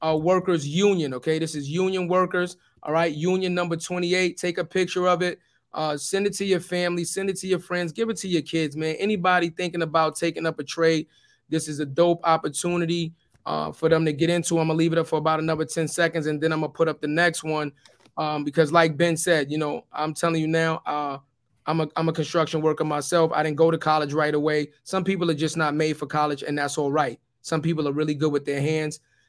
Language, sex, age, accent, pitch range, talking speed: English, male, 20-39, American, 150-170 Hz, 240 wpm